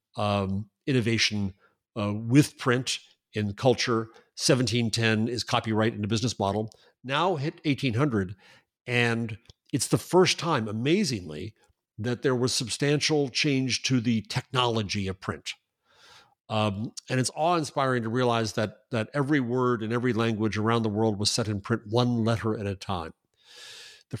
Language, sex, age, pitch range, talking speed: English, male, 50-69, 105-130 Hz, 145 wpm